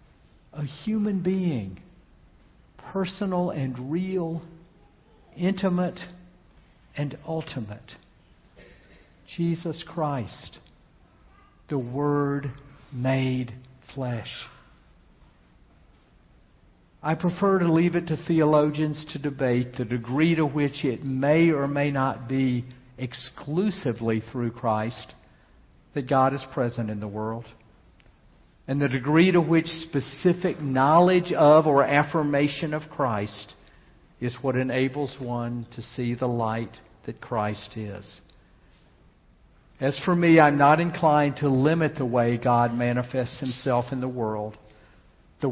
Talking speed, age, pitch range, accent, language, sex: 110 wpm, 60-79, 120-155 Hz, American, English, male